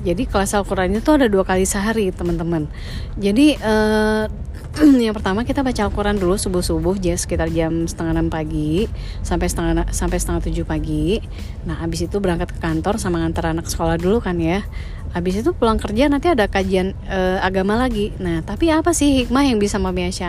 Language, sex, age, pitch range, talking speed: Indonesian, female, 30-49, 175-225 Hz, 185 wpm